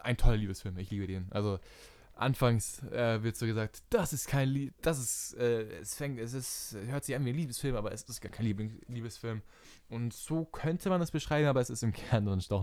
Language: German